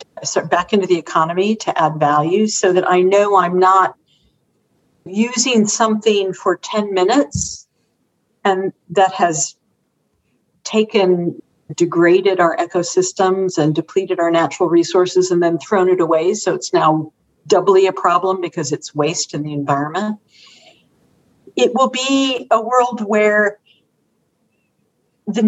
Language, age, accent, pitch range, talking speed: English, 50-69, American, 175-215 Hz, 125 wpm